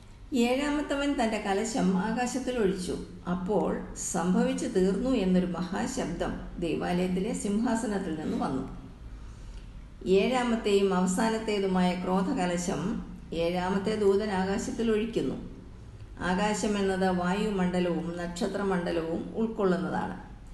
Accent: native